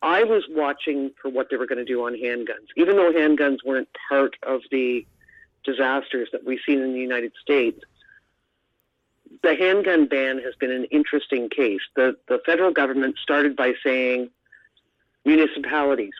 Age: 50-69